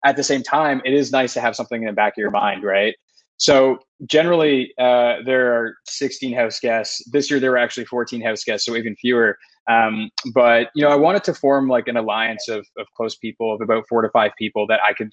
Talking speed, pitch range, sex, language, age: 240 wpm, 115-130 Hz, male, English, 20-39